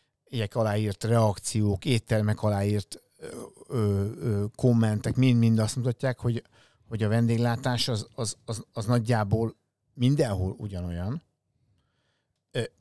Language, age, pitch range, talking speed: Hungarian, 60-79, 105-120 Hz, 110 wpm